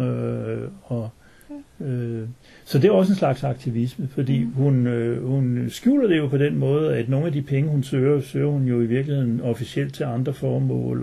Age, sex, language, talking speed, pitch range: 60-79, male, Danish, 175 wpm, 115-135 Hz